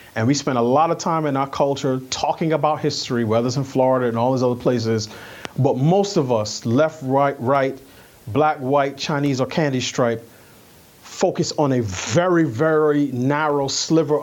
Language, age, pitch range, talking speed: English, 30-49, 125-155 Hz, 175 wpm